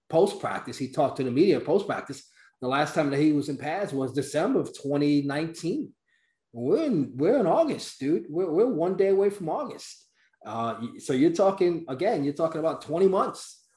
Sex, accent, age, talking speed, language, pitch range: male, American, 30-49, 185 wpm, English, 135-165 Hz